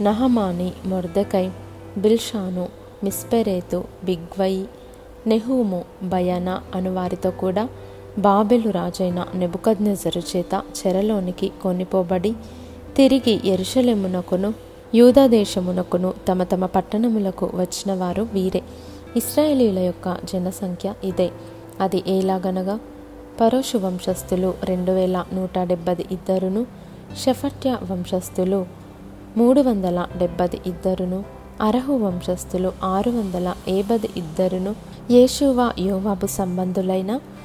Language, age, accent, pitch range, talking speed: Telugu, 20-39, native, 185-215 Hz, 80 wpm